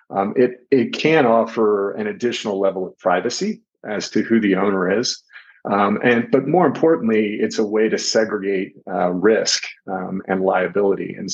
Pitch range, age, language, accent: 95-125 Hz, 50-69, English, American